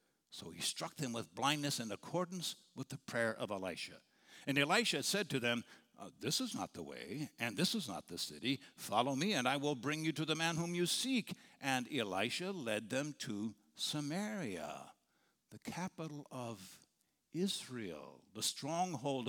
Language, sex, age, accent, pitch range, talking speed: English, male, 60-79, American, 120-185 Hz, 170 wpm